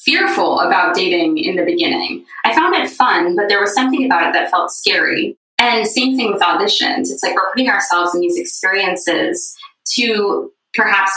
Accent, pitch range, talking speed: American, 180-275 Hz, 185 wpm